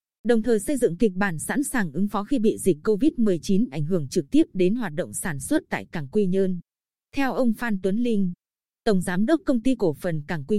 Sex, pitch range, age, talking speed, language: female, 190-240 Hz, 20-39, 230 wpm, Vietnamese